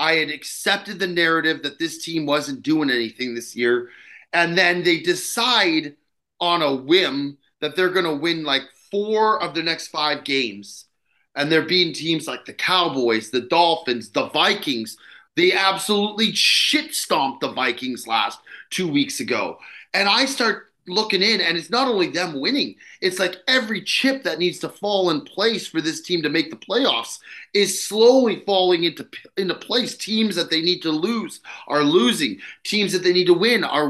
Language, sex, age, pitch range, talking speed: English, male, 30-49, 160-210 Hz, 180 wpm